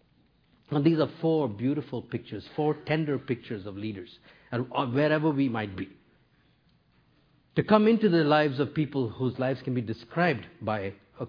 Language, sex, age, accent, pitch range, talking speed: English, male, 50-69, Indian, 115-155 Hz, 155 wpm